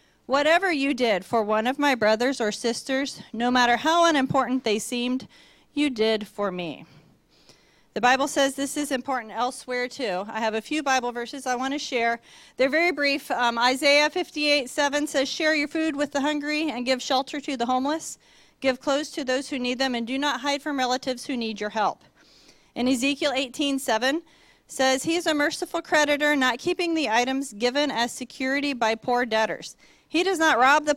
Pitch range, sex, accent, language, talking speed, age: 245-300 Hz, female, American, English, 190 wpm, 40-59